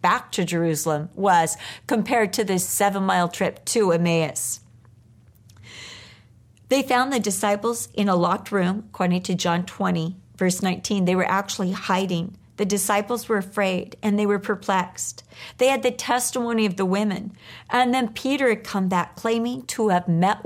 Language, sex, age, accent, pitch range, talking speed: English, female, 50-69, American, 180-250 Hz, 160 wpm